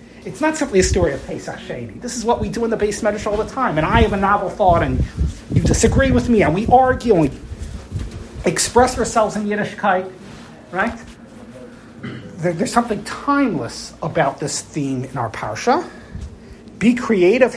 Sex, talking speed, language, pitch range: male, 175 wpm, English, 140-210 Hz